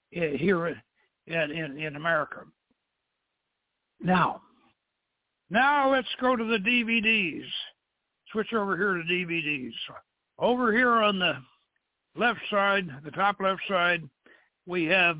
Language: English